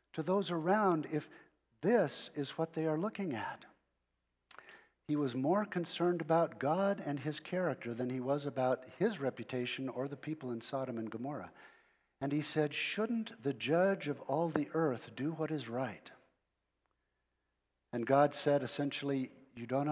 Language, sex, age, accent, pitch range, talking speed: English, male, 50-69, American, 120-155 Hz, 160 wpm